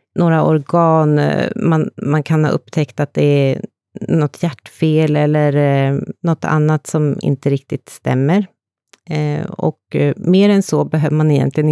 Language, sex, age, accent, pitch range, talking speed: Swedish, female, 30-49, native, 140-165 Hz, 135 wpm